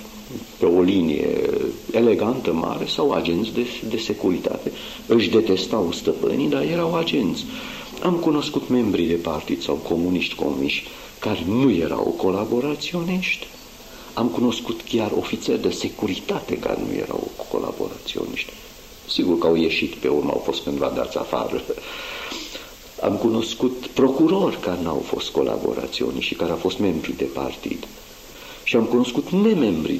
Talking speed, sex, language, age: 135 wpm, male, Romanian, 50-69